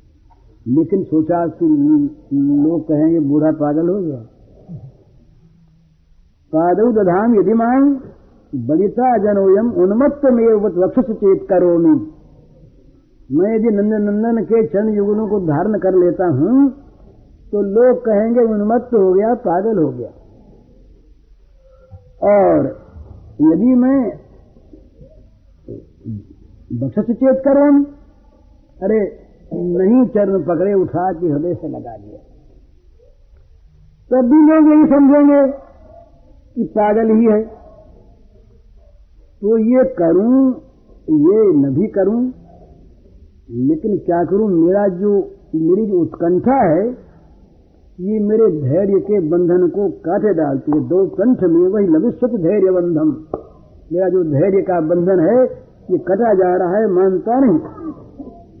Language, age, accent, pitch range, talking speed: Hindi, 50-69, native, 165-240 Hz, 115 wpm